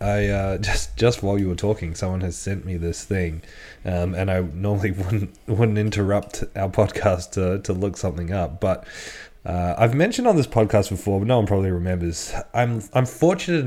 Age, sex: 20-39, male